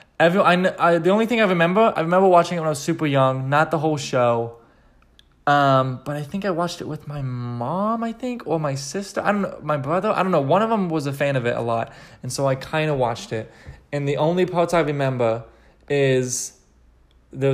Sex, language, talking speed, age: male, English, 235 wpm, 20-39